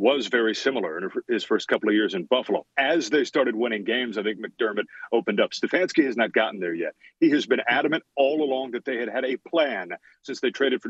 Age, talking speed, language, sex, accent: 40-59, 235 wpm, English, male, American